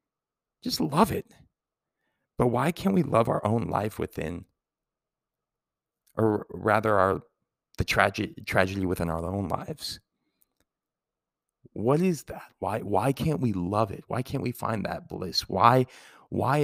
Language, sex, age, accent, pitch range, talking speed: English, male, 30-49, American, 95-130 Hz, 140 wpm